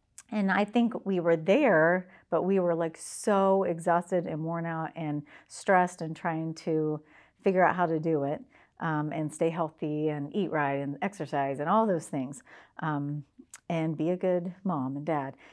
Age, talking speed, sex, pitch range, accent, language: 50-69, 180 wpm, female, 150-180 Hz, American, English